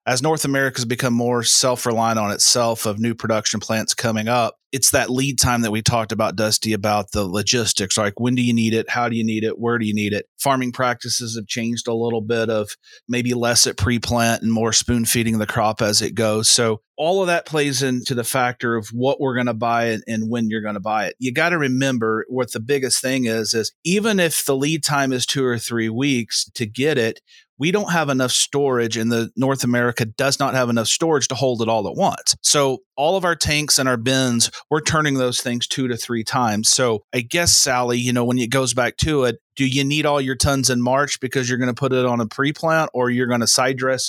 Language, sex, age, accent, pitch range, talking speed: English, male, 30-49, American, 115-135 Hz, 245 wpm